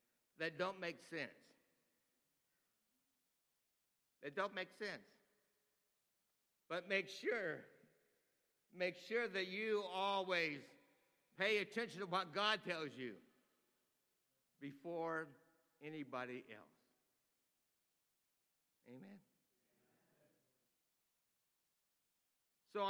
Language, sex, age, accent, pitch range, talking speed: English, male, 60-79, American, 160-205 Hz, 75 wpm